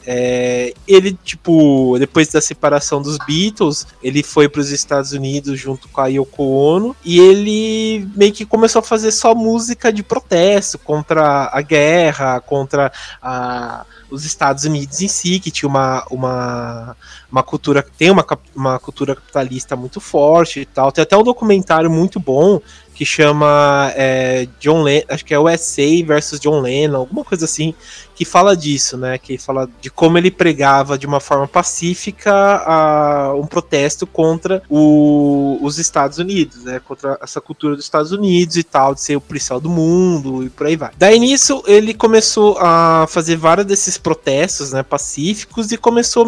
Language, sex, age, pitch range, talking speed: Portuguese, male, 20-39, 140-185 Hz, 170 wpm